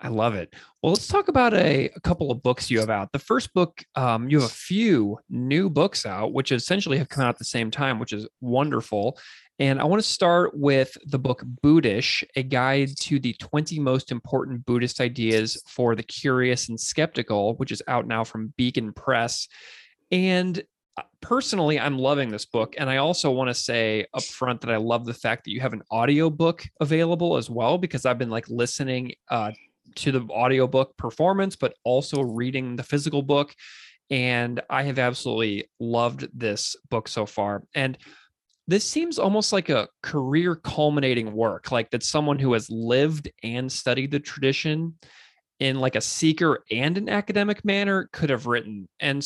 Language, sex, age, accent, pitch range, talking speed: English, male, 30-49, American, 120-150 Hz, 185 wpm